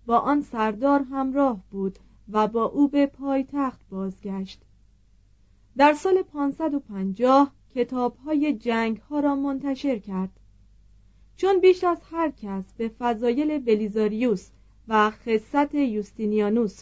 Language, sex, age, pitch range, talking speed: Persian, female, 30-49, 210-280 Hz, 115 wpm